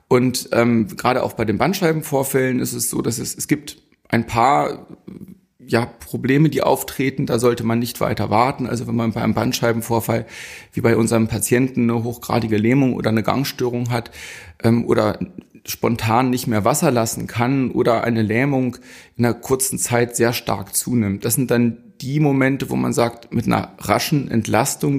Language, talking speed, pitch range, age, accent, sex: German, 175 wpm, 115-140 Hz, 30-49, German, male